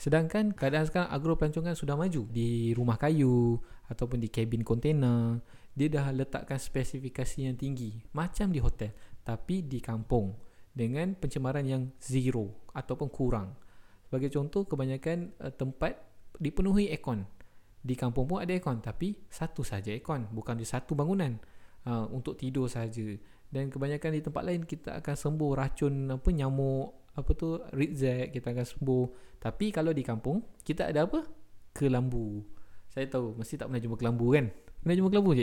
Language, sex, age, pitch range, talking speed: Malay, male, 20-39, 120-150 Hz, 155 wpm